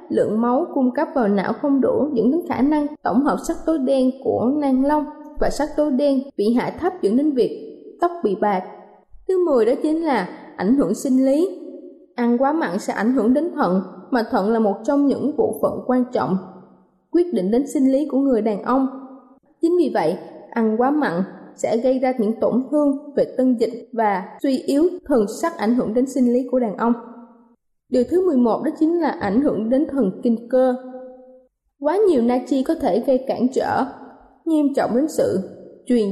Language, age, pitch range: Vietnamese, 20-39, 240-310 Hz